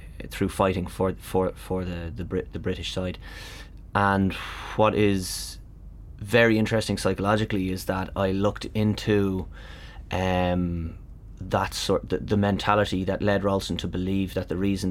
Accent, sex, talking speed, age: Irish, male, 145 wpm, 30-49